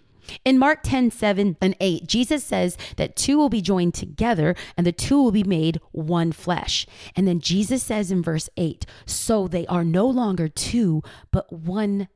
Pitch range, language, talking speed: 170-240 Hz, English, 180 wpm